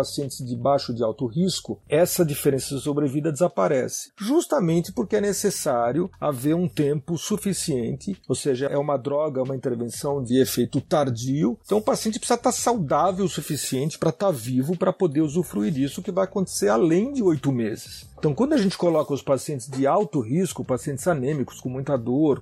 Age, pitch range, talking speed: 50-69, 130-180 Hz, 180 wpm